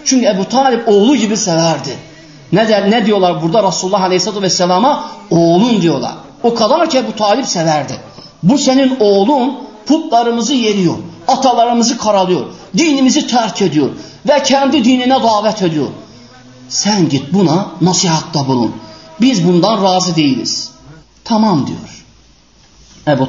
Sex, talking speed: male, 125 wpm